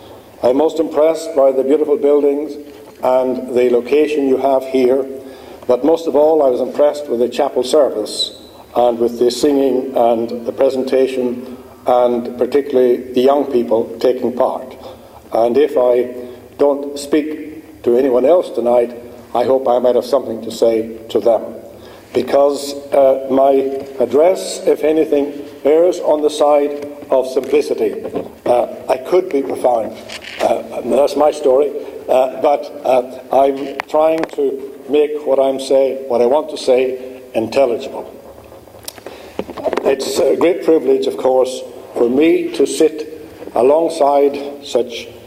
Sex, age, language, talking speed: male, 60-79, English, 140 wpm